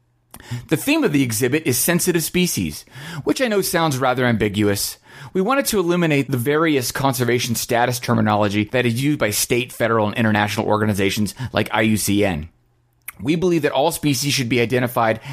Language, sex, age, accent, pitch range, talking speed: English, male, 30-49, American, 115-160 Hz, 165 wpm